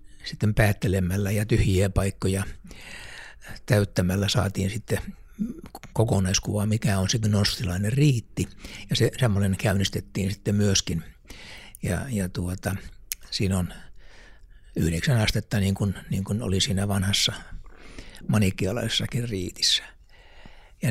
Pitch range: 95-115 Hz